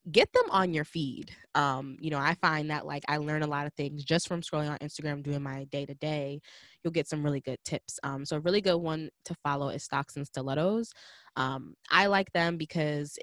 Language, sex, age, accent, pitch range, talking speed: English, female, 20-39, American, 145-185 Hz, 220 wpm